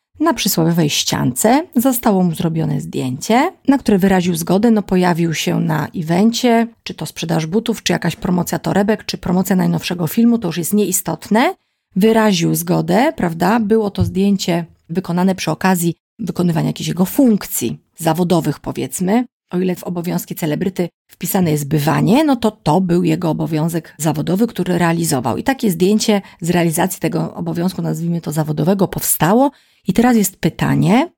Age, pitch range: 30-49, 160-200 Hz